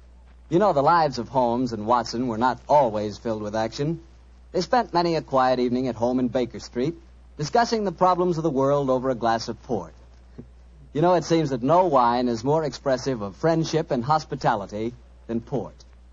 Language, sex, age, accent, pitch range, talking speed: English, male, 60-79, American, 100-160 Hz, 195 wpm